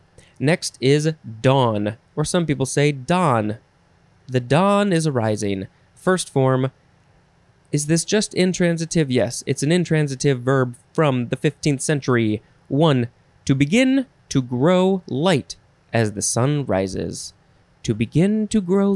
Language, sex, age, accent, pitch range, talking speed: English, male, 20-39, American, 120-165 Hz, 130 wpm